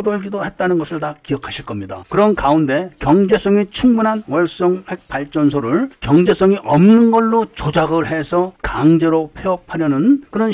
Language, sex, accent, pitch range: Korean, male, native, 135-185 Hz